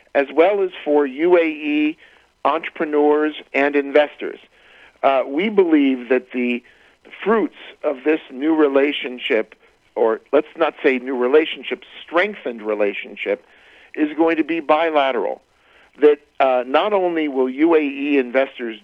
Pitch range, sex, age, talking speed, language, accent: 135-165 Hz, male, 50-69, 120 wpm, French, American